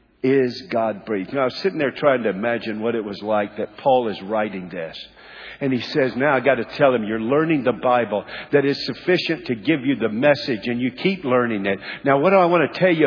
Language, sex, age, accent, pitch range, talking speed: English, male, 50-69, American, 125-180 Hz, 250 wpm